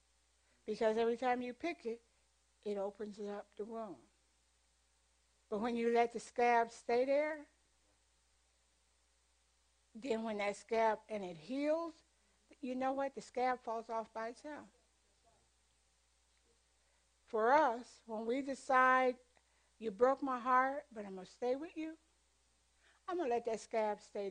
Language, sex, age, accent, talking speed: English, female, 60-79, American, 145 wpm